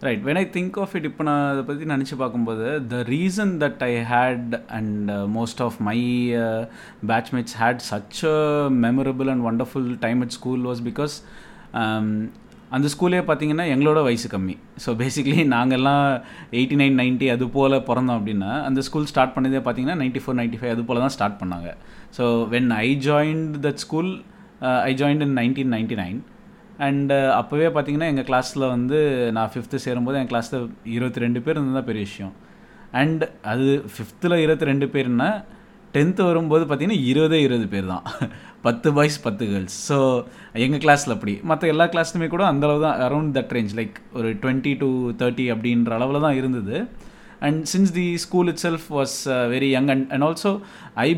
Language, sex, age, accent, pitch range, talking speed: Tamil, male, 20-39, native, 120-150 Hz, 170 wpm